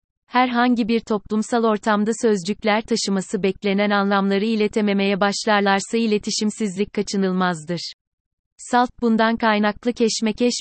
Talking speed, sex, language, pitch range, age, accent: 90 wpm, female, Turkish, 195-230 Hz, 30-49, native